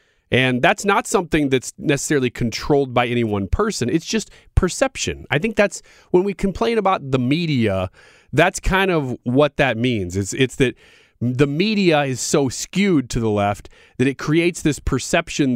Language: English